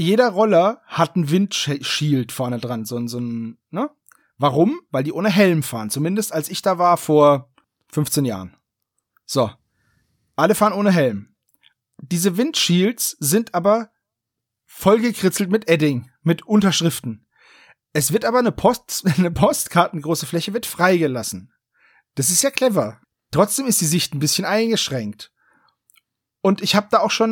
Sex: male